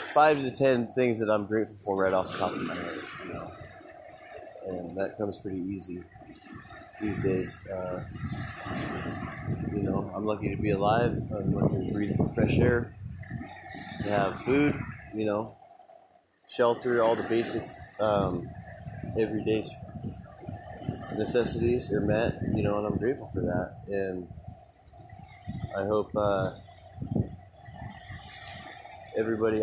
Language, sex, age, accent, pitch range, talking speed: English, male, 20-39, American, 100-120 Hz, 130 wpm